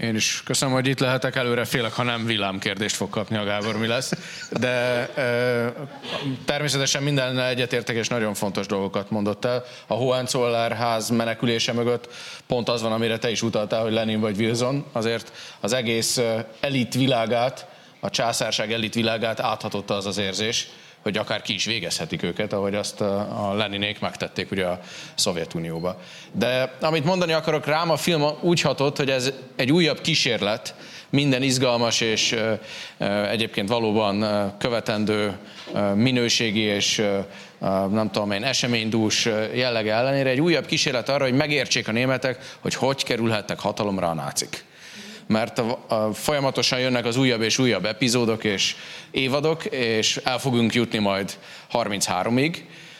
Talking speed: 145 wpm